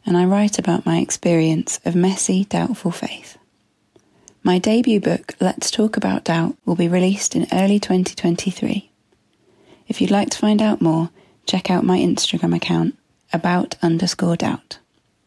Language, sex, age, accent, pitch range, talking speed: English, female, 30-49, British, 170-205 Hz, 150 wpm